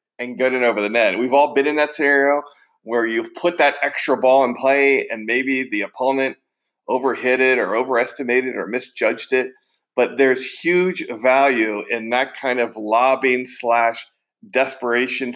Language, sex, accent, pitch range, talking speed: English, male, American, 120-145 Hz, 165 wpm